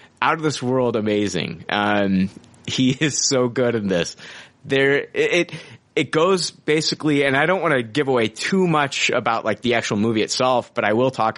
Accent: American